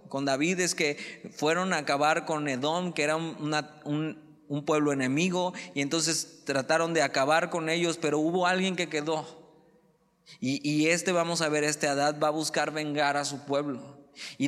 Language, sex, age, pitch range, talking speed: Spanish, male, 20-39, 130-160 Hz, 180 wpm